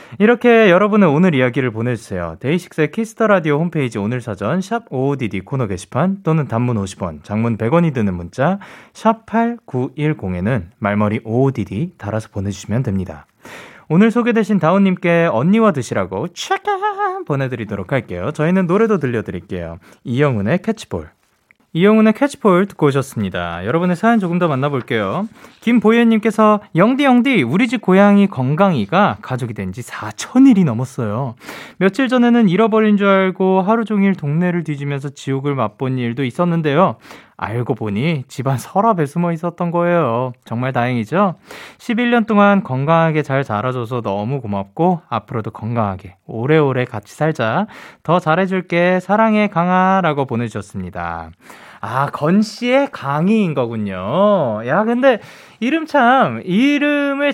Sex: male